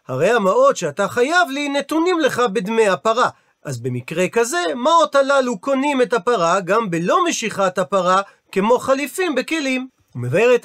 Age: 40-59